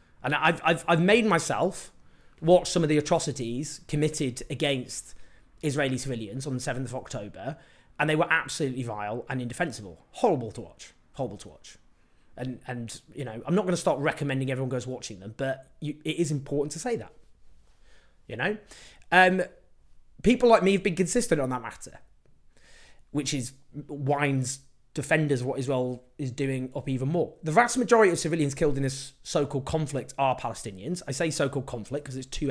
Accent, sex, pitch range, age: British, male, 130-180 Hz, 20-39